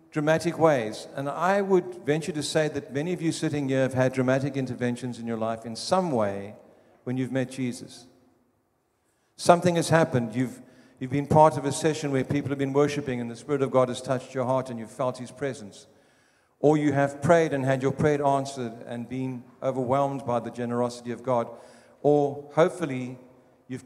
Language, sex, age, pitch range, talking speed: English, male, 50-69, 125-150 Hz, 195 wpm